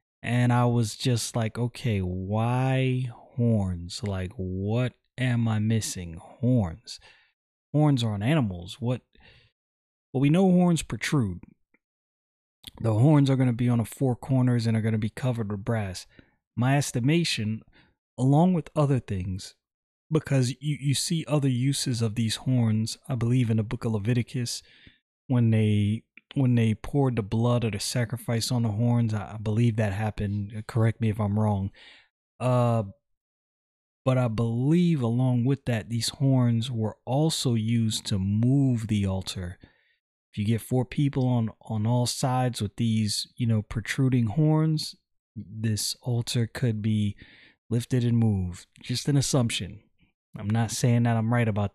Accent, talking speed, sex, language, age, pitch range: American, 155 wpm, male, English, 30-49, 110-125 Hz